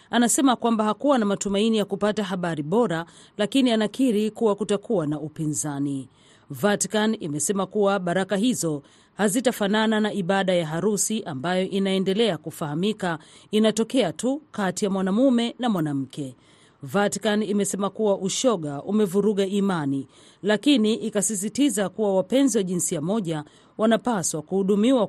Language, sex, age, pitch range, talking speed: Swahili, female, 40-59, 165-220 Hz, 120 wpm